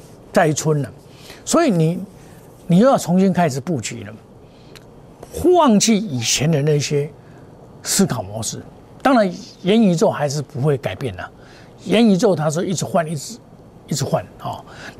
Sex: male